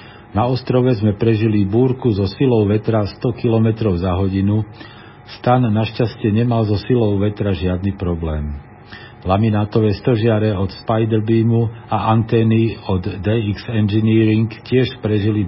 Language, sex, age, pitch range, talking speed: Slovak, male, 50-69, 100-120 Hz, 130 wpm